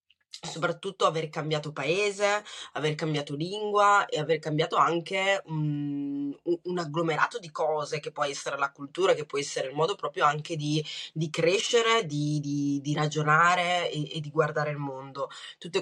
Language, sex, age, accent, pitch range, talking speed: Italian, female, 20-39, native, 150-180 Hz, 160 wpm